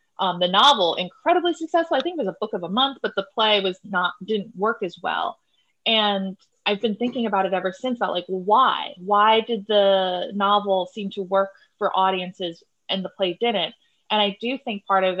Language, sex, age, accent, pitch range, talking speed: English, female, 20-39, American, 180-215 Hz, 210 wpm